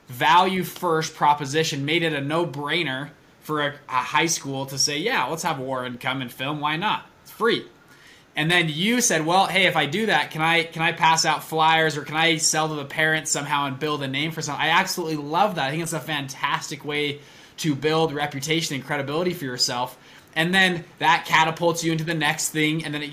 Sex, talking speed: male, 225 wpm